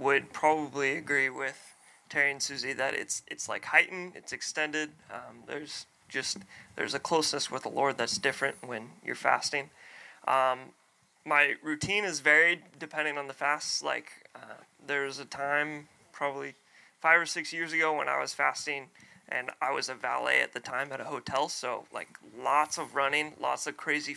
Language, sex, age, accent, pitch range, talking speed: English, male, 20-39, American, 140-165 Hz, 175 wpm